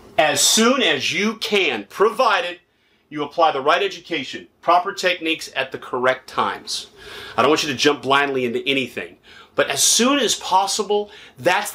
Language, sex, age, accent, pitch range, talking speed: English, male, 30-49, American, 145-205 Hz, 165 wpm